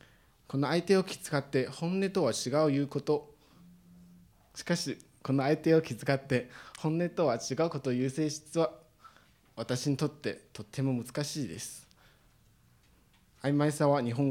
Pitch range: 115-150 Hz